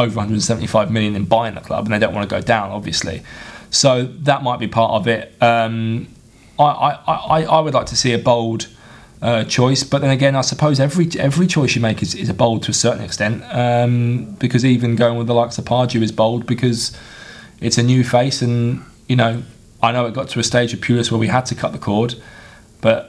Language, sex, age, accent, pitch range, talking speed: English, male, 20-39, British, 110-120 Hz, 230 wpm